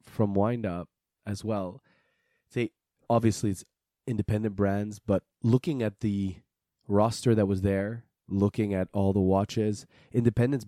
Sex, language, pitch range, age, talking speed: male, English, 100-115 Hz, 20-39, 135 wpm